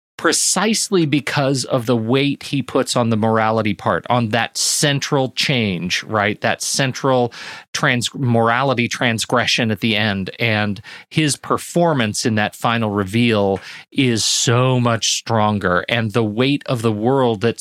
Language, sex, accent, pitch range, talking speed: English, male, American, 110-135 Hz, 140 wpm